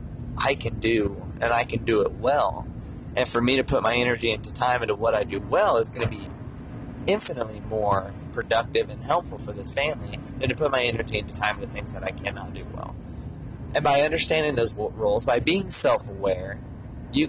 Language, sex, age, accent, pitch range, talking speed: English, male, 30-49, American, 105-135 Hz, 200 wpm